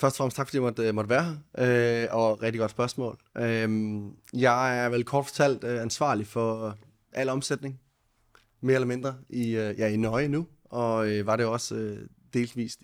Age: 20-39